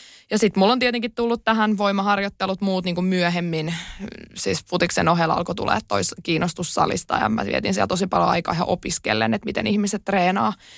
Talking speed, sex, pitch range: 175 wpm, female, 170-195 Hz